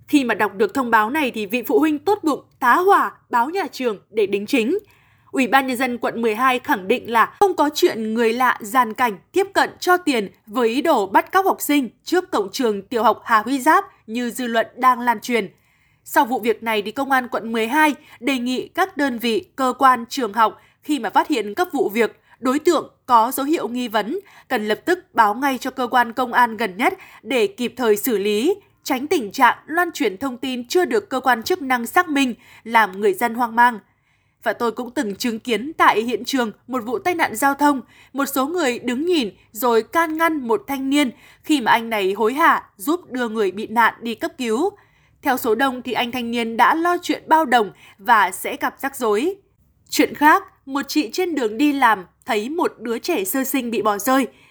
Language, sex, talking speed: Vietnamese, female, 225 wpm